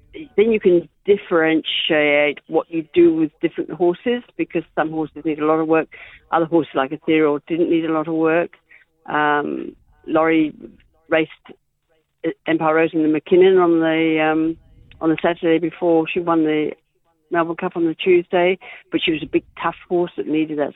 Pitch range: 150-170 Hz